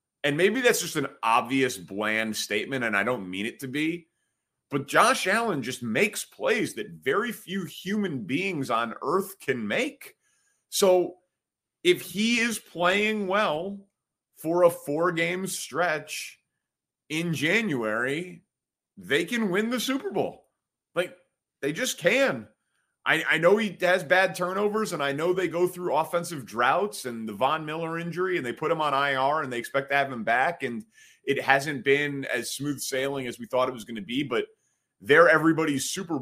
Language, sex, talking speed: English, male, 170 wpm